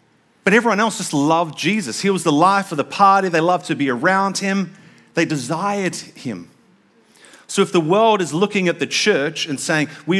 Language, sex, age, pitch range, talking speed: English, male, 40-59, 130-175 Hz, 200 wpm